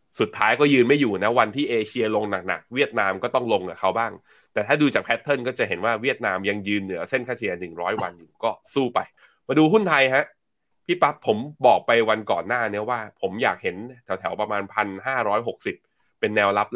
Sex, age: male, 20-39